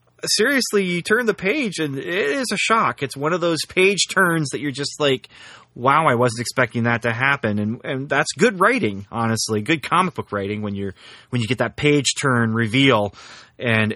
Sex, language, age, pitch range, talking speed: male, English, 30-49, 110-140 Hz, 200 wpm